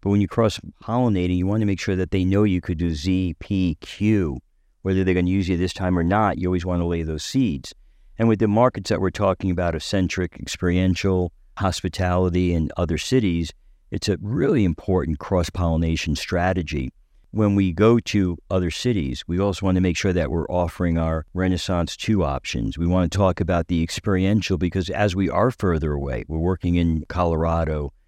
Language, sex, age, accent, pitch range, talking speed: English, male, 50-69, American, 85-100 Hz, 195 wpm